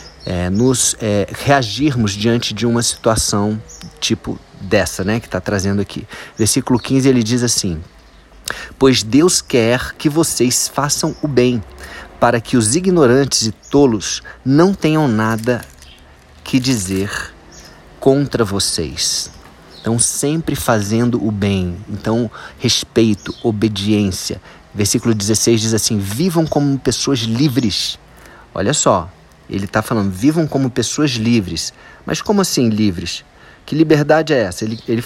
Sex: male